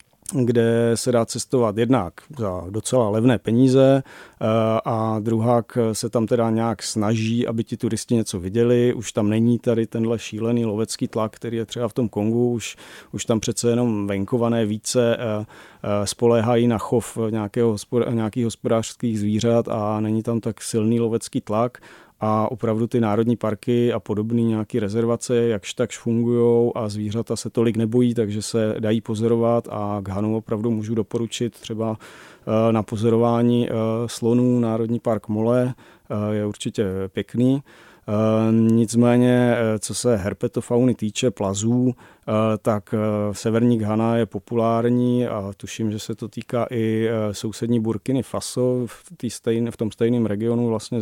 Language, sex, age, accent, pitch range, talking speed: Czech, male, 40-59, native, 110-120 Hz, 140 wpm